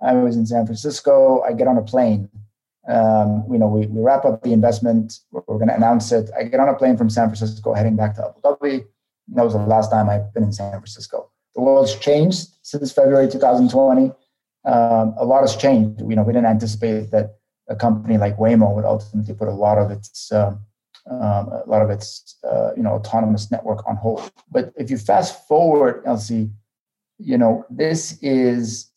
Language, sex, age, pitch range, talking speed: English, male, 30-49, 105-120 Hz, 210 wpm